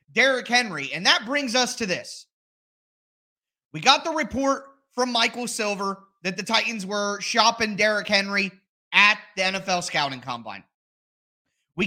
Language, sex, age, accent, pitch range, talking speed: English, male, 30-49, American, 190-260 Hz, 140 wpm